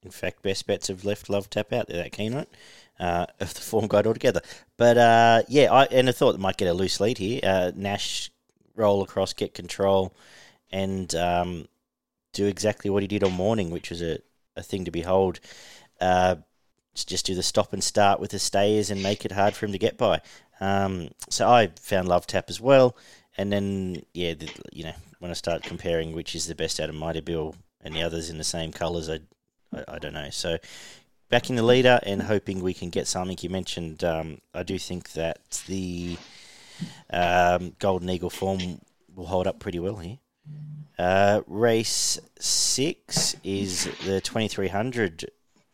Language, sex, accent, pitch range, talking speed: English, male, Australian, 85-100 Hz, 190 wpm